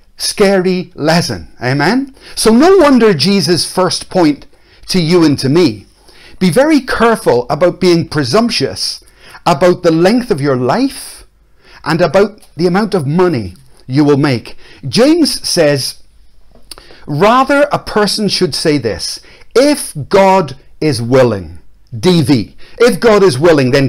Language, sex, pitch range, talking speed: English, male, 130-195 Hz, 135 wpm